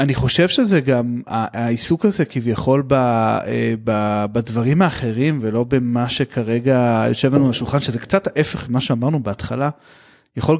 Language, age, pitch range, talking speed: Hebrew, 30-49, 120-145 Hz, 140 wpm